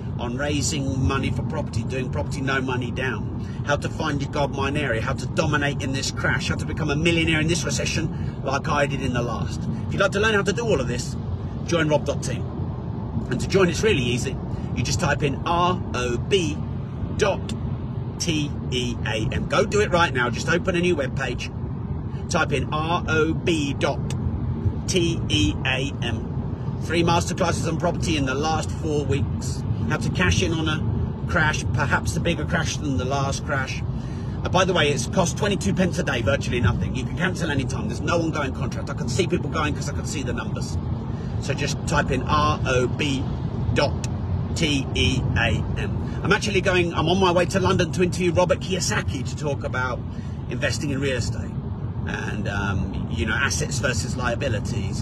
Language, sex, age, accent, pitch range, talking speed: English, male, 40-59, British, 115-140 Hz, 190 wpm